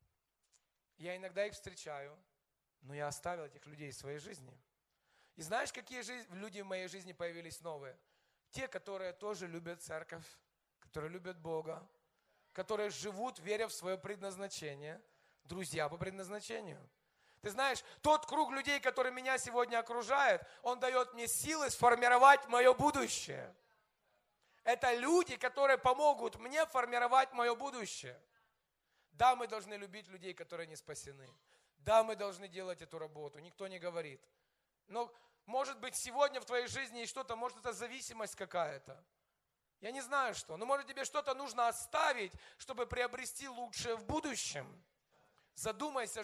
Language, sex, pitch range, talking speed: Russian, male, 175-255 Hz, 140 wpm